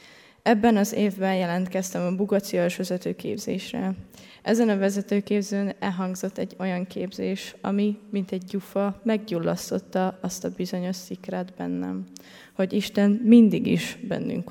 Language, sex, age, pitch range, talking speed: Hungarian, female, 20-39, 175-205 Hz, 120 wpm